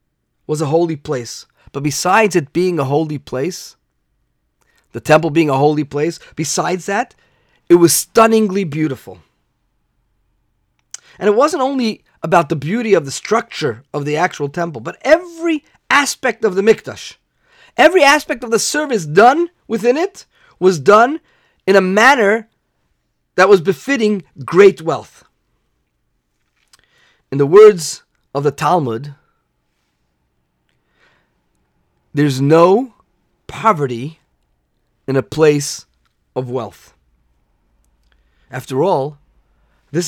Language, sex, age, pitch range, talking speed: English, male, 40-59, 140-225 Hz, 115 wpm